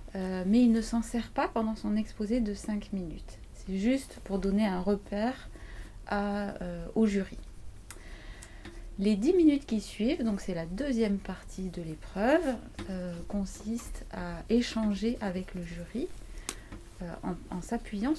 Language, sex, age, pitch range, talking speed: French, female, 30-49, 185-230 Hz, 140 wpm